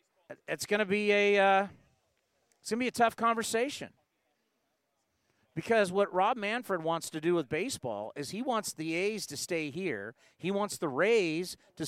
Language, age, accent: English, 50-69, American